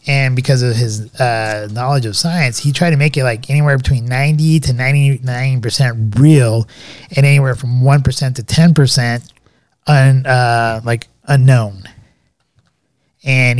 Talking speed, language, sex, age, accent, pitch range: 130 wpm, English, male, 20-39, American, 115-140 Hz